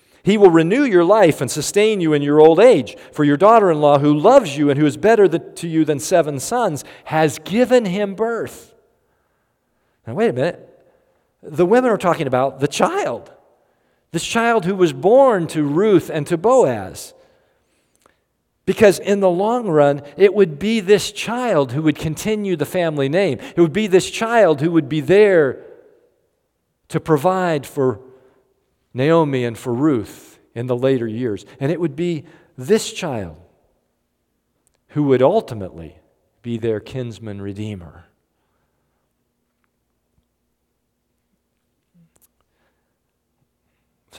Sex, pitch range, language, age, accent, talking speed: male, 130-195 Hz, English, 50-69, American, 140 wpm